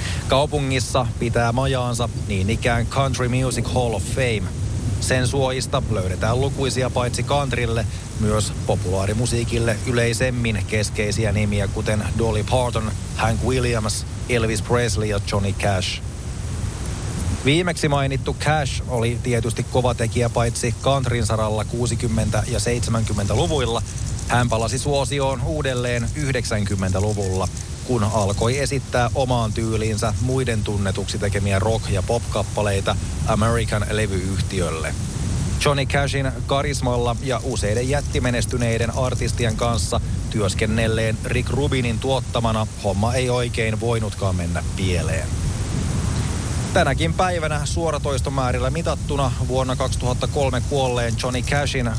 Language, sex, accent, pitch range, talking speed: Finnish, male, native, 105-125 Hz, 100 wpm